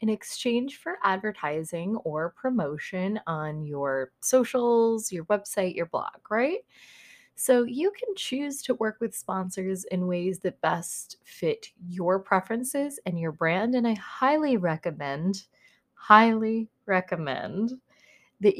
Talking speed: 125 wpm